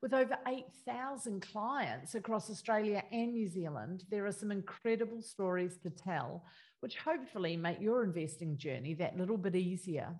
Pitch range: 170-225 Hz